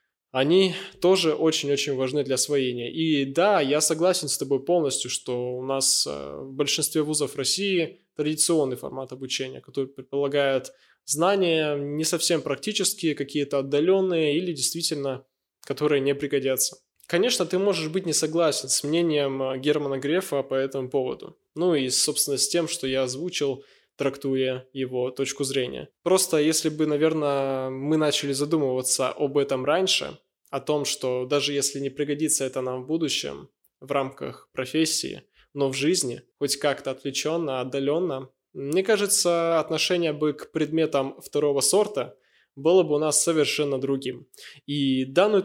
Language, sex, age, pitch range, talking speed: Russian, male, 20-39, 135-160 Hz, 145 wpm